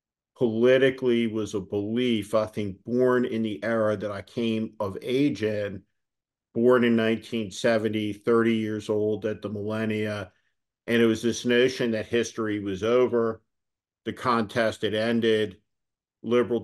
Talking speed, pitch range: 140 wpm, 105-120 Hz